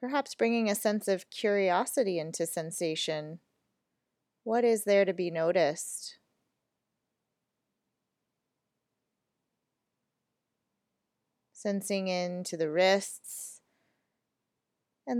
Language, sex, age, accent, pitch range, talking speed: English, female, 20-39, American, 170-200 Hz, 75 wpm